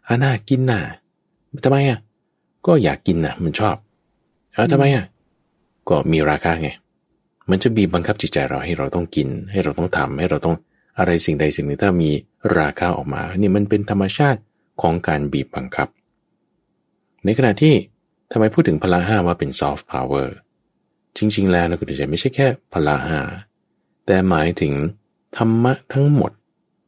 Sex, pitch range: male, 85-125 Hz